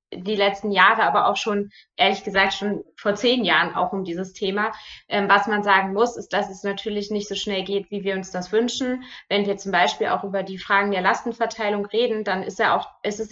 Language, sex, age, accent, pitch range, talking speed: German, female, 20-39, German, 195-215 Hz, 235 wpm